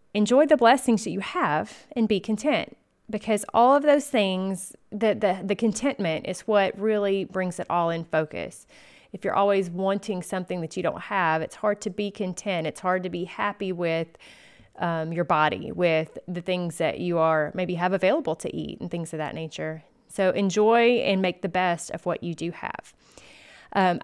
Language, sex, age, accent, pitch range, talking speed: English, female, 30-49, American, 175-225 Hz, 190 wpm